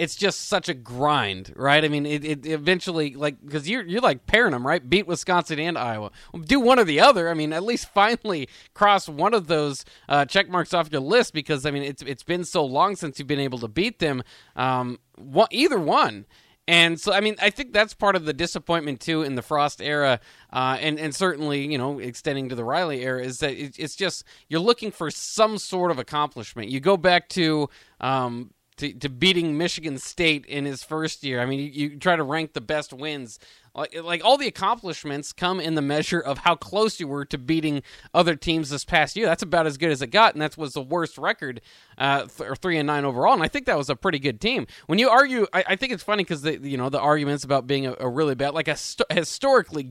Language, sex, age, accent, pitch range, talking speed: English, male, 20-39, American, 135-175 Hz, 240 wpm